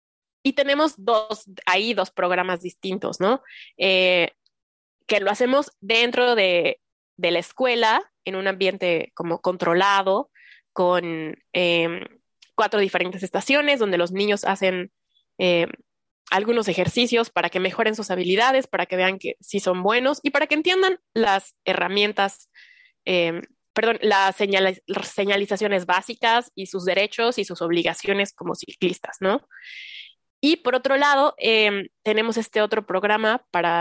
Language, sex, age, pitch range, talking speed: Spanish, female, 20-39, 185-240 Hz, 135 wpm